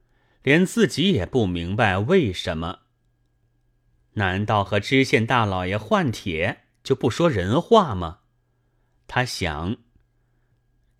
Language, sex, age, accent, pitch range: Chinese, male, 30-49, native, 105-135 Hz